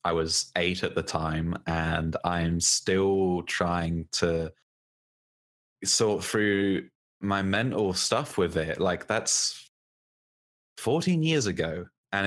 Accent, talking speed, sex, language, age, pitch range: British, 115 wpm, male, English, 20-39, 85-100 Hz